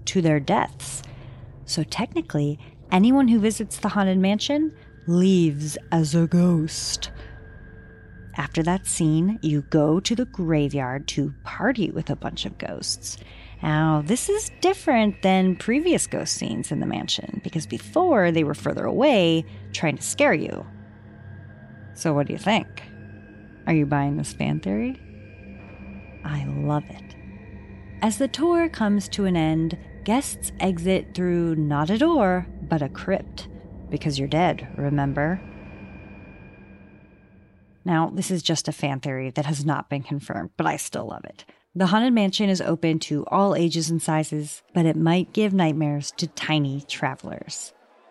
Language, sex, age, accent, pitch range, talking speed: English, female, 30-49, American, 130-190 Hz, 150 wpm